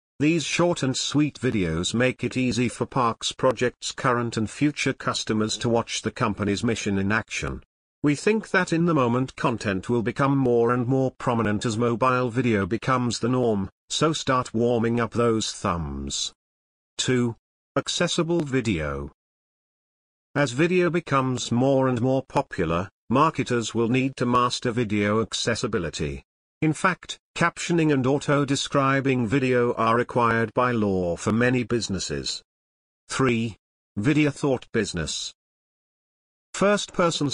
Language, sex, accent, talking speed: English, male, British, 130 wpm